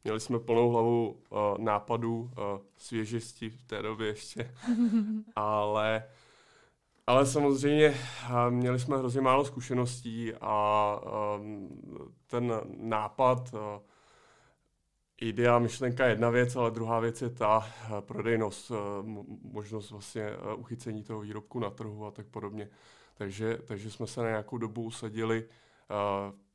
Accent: native